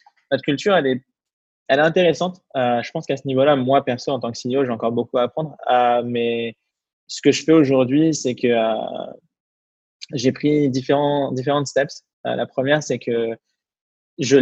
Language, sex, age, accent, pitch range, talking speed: English, male, 20-39, French, 120-140 Hz, 185 wpm